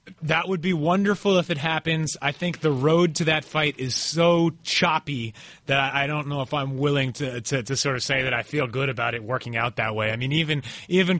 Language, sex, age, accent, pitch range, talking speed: English, male, 30-49, American, 130-180 Hz, 235 wpm